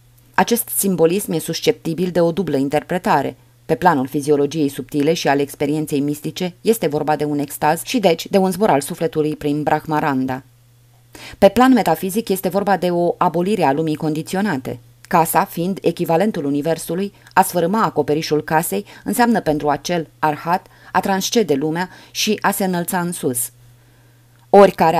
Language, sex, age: Romanian, female, 20-39